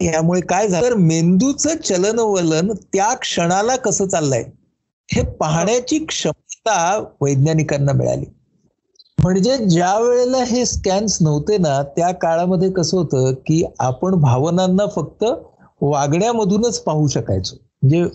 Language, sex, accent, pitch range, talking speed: Marathi, male, native, 150-210 Hz, 110 wpm